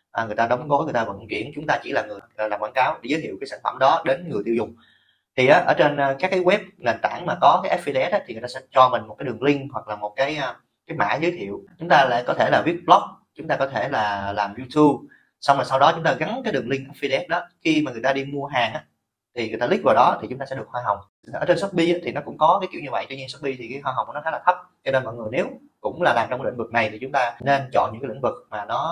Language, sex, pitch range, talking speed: Vietnamese, male, 115-150 Hz, 310 wpm